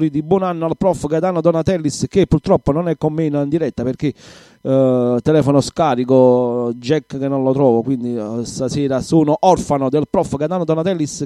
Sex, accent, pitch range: male, native, 150-180 Hz